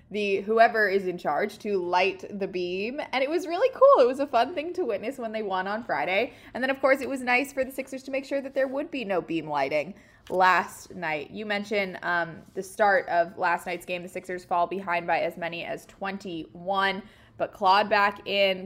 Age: 20-39